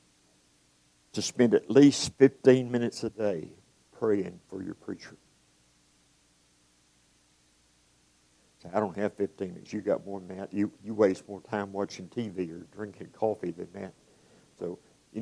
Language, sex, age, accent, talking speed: English, male, 60-79, American, 140 wpm